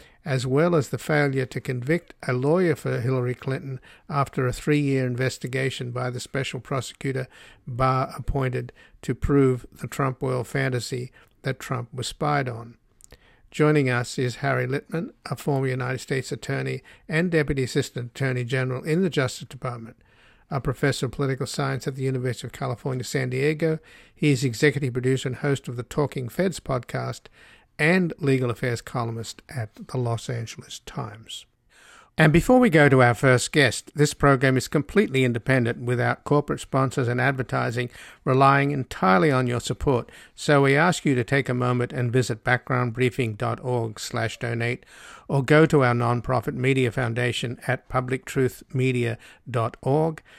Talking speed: 155 wpm